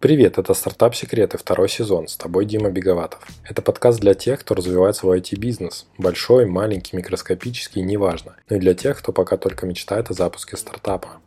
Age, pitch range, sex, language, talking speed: 20-39, 90-110 Hz, male, Russian, 180 wpm